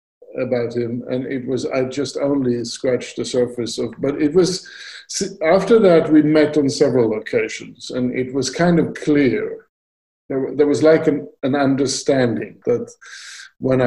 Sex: male